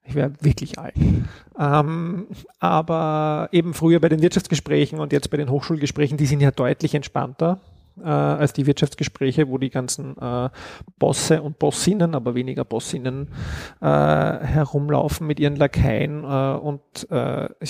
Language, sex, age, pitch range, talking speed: German, male, 40-59, 135-160 Hz, 140 wpm